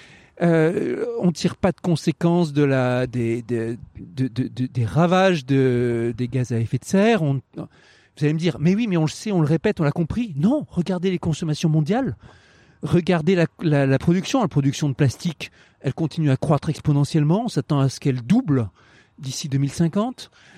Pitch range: 135-180 Hz